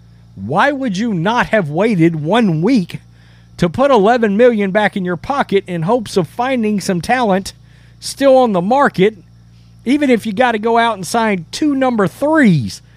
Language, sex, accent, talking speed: English, male, American, 175 wpm